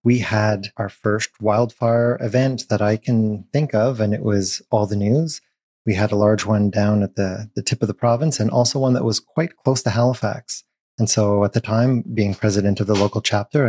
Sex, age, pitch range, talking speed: male, 30-49, 105-120 Hz, 220 wpm